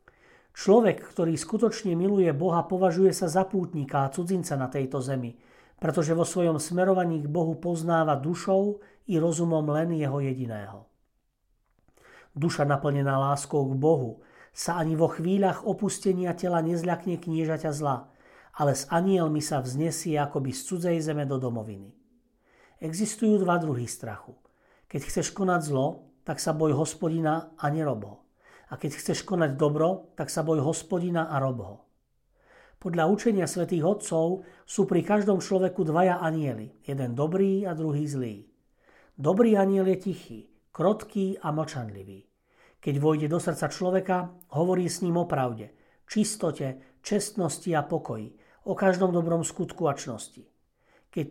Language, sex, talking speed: Slovak, male, 140 wpm